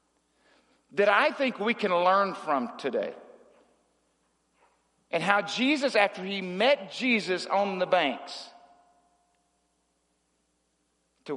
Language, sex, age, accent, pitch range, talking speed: English, male, 50-69, American, 145-210 Hz, 100 wpm